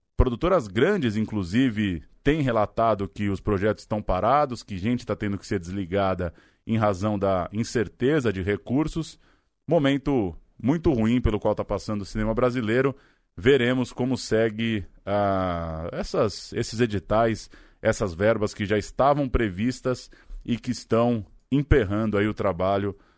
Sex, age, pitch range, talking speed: male, 20-39, 105-125 Hz, 135 wpm